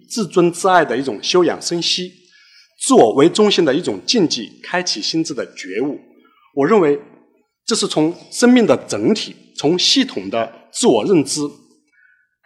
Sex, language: male, Chinese